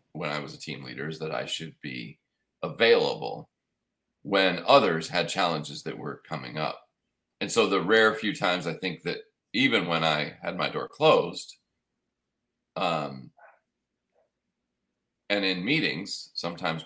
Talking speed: 145 wpm